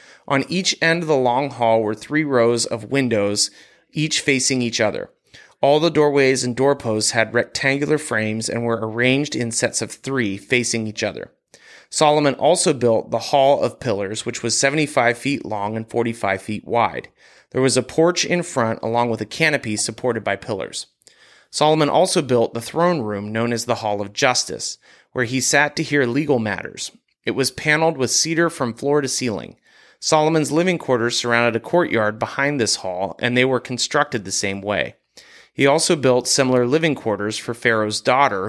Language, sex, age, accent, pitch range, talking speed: English, male, 30-49, American, 110-145 Hz, 180 wpm